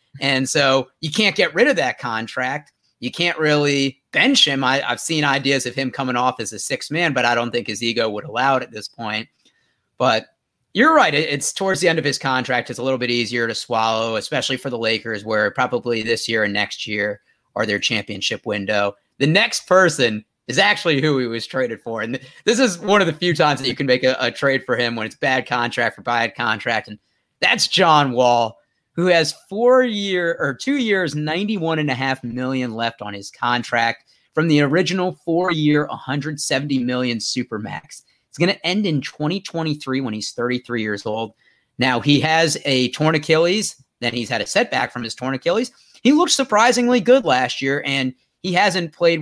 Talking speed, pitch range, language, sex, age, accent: 200 wpm, 120-155 Hz, English, male, 30-49, American